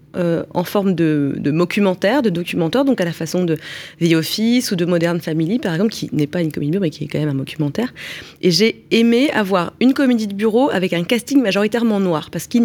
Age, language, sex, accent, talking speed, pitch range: 30-49, French, female, French, 235 wpm, 170-220 Hz